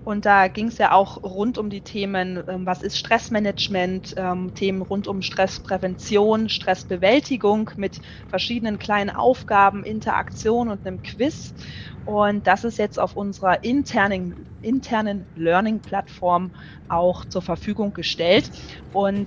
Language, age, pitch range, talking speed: German, 20-39, 185-215 Hz, 130 wpm